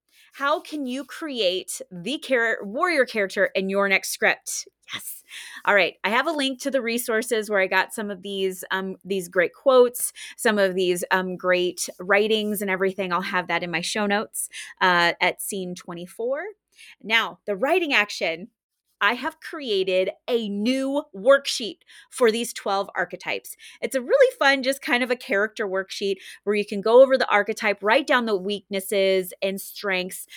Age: 30-49